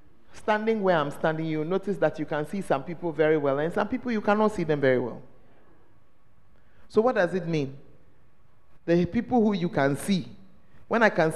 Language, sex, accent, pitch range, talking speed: English, male, Nigerian, 150-210 Hz, 195 wpm